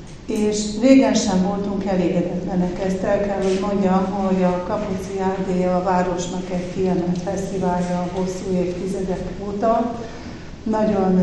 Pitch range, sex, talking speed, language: 185-200 Hz, female, 130 wpm, Hungarian